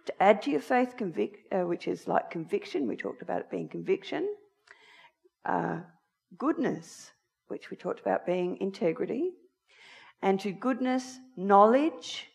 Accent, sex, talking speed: Australian, female, 140 wpm